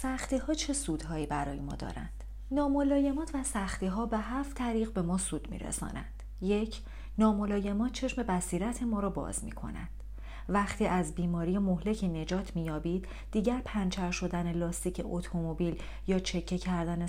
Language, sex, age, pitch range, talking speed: Persian, female, 40-59, 170-225 Hz, 135 wpm